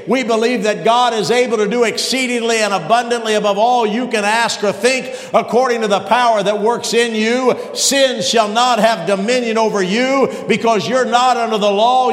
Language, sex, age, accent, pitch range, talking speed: English, male, 50-69, American, 220-245 Hz, 195 wpm